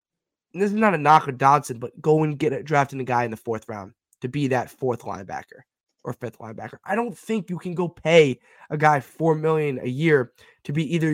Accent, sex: American, male